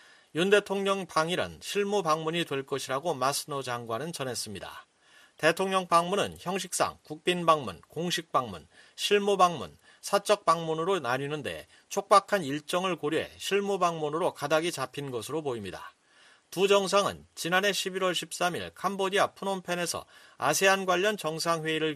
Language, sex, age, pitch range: Korean, male, 40-59, 145-190 Hz